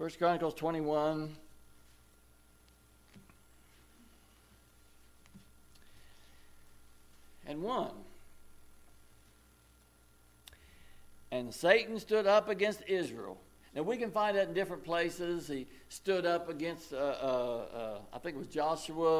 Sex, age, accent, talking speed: male, 60-79, American, 95 wpm